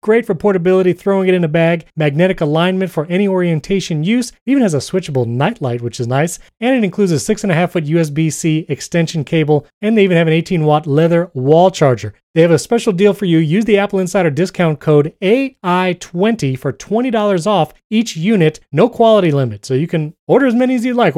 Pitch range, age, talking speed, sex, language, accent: 150-200 Hz, 30-49, 215 wpm, male, English, American